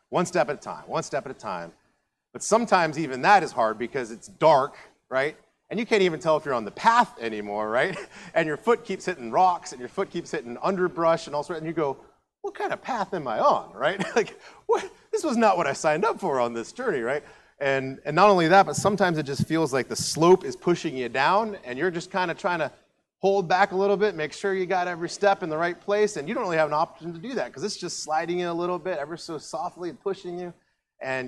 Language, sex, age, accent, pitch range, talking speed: English, male, 30-49, American, 135-185 Hz, 260 wpm